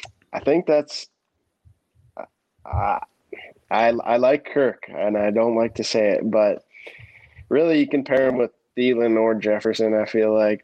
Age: 20-39